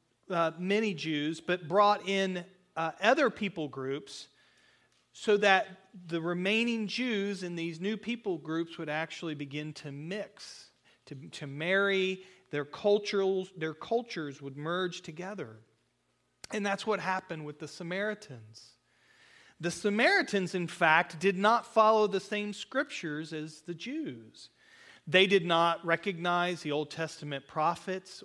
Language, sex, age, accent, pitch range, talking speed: English, male, 40-59, American, 155-195 Hz, 135 wpm